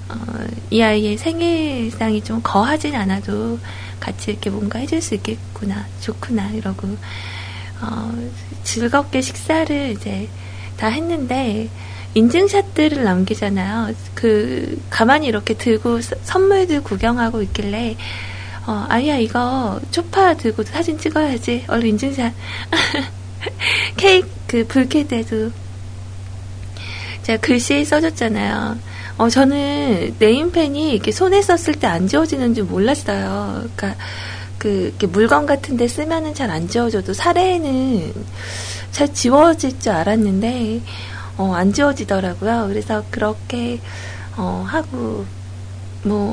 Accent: native